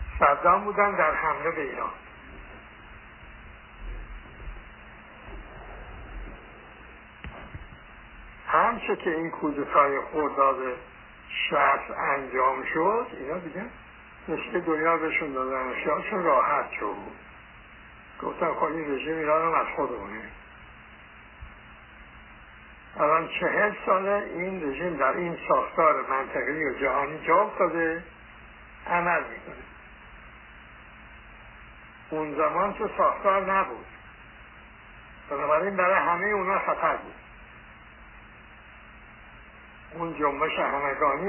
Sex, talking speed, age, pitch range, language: male, 90 wpm, 60-79, 145-175 Hz, Persian